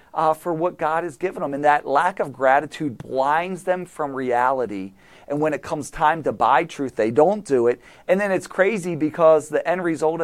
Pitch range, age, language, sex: 135-165 Hz, 40-59, English, male